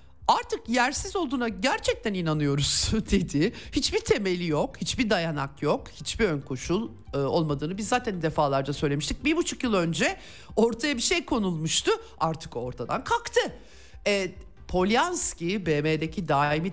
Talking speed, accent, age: 125 wpm, native, 50-69